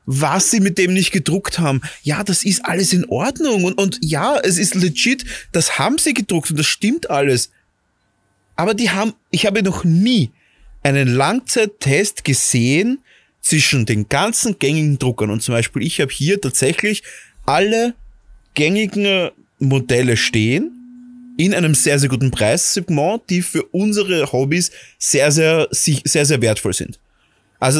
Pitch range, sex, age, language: 130-195 Hz, male, 30-49, German